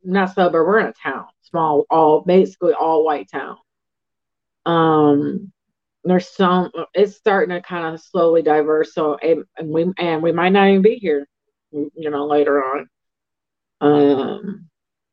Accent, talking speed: American, 150 wpm